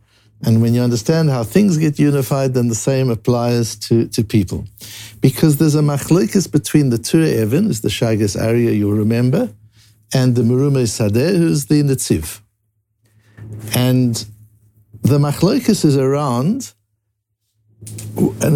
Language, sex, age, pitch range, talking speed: English, male, 60-79, 110-150 Hz, 140 wpm